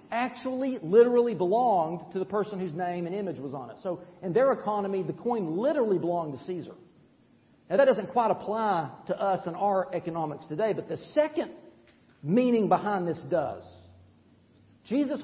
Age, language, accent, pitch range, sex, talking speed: 40-59, English, American, 165-255 Hz, male, 165 wpm